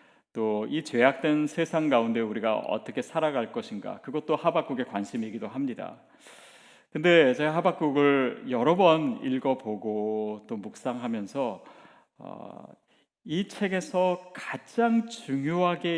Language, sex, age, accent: Korean, male, 40-59, native